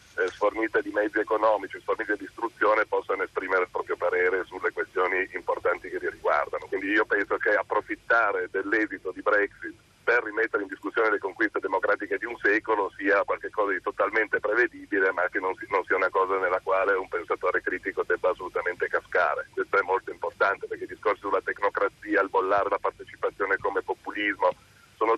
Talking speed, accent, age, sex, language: 175 wpm, native, 40-59, male, Italian